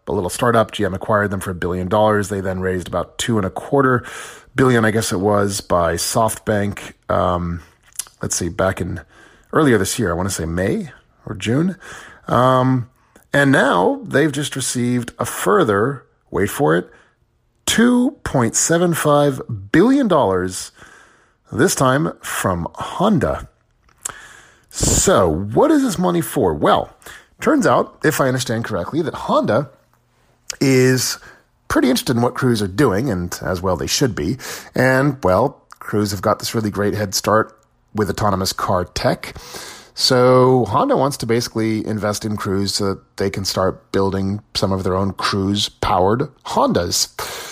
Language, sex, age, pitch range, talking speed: English, male, 30-49, 100-135 Hz, 150 wpm